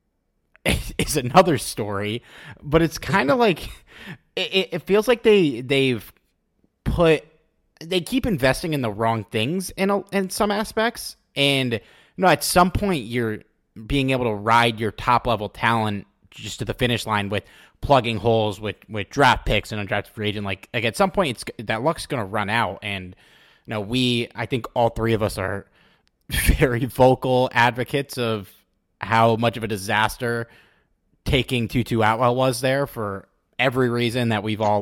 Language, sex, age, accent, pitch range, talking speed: English, male, 30-49, American, 110-150 Hz, 175 wpm